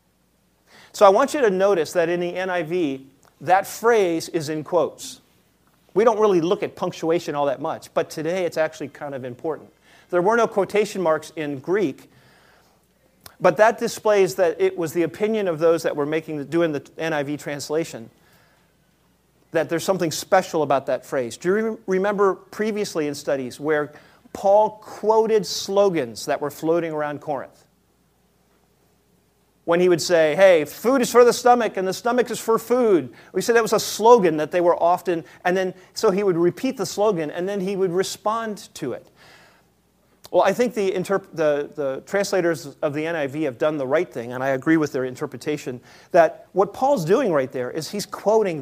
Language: English